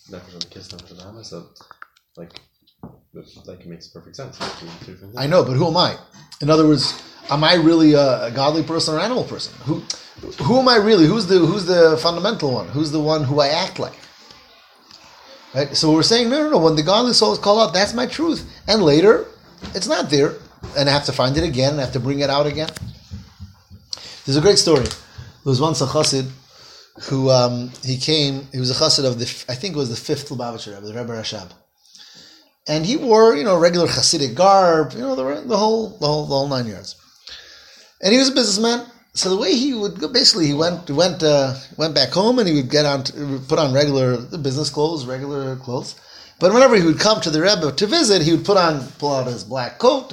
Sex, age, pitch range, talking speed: male, 30-49, 130-185 Hz, 215 wpm